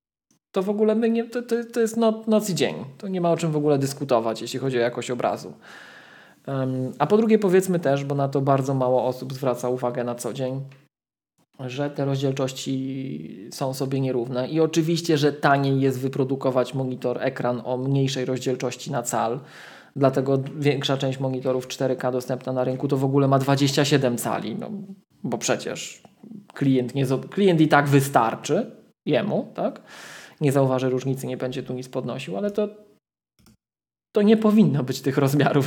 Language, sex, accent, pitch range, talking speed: Polish, male, native, 130-160 Hz, 175 wpm